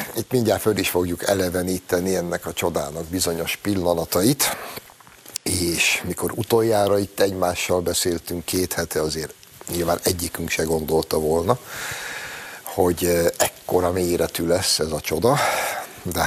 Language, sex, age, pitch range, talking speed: Hungarian, male, 60-79, 85-110 Hz, 120 wpm